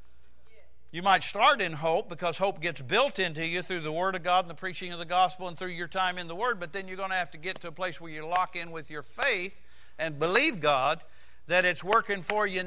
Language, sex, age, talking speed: English, male, 60-79, 260 wpm